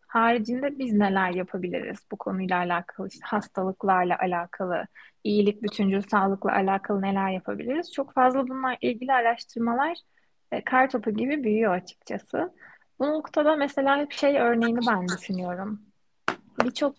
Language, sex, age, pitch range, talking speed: Turkish, female, 30-49, 210-260 Hz, 125 wpm